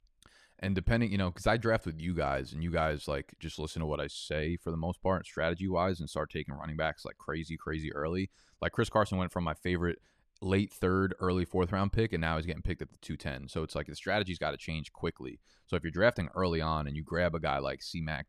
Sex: male